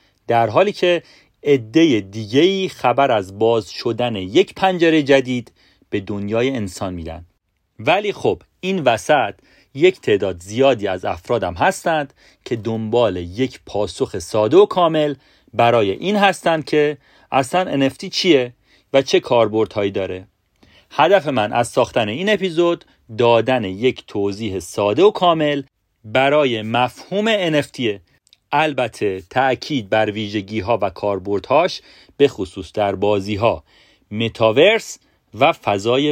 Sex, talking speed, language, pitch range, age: male, 120 wpm, Persian, 105-160 Hz, 40-59